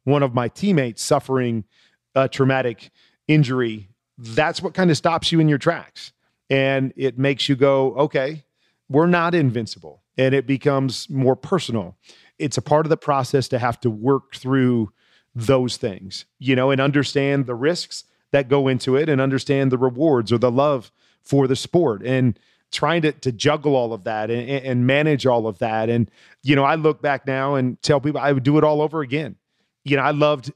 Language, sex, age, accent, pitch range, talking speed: English, male, 40-59, American, 125-145 Hz, 195 wpm